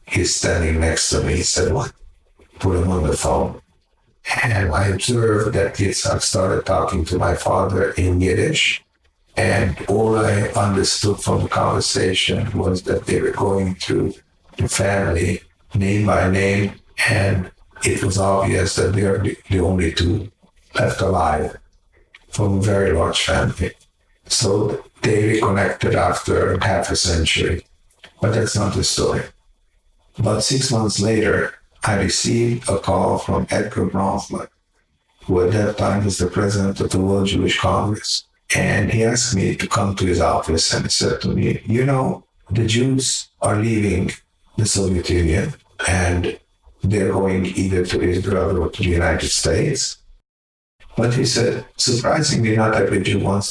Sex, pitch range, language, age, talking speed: male, 90-105 Hz, English, 60-79, 155 wpm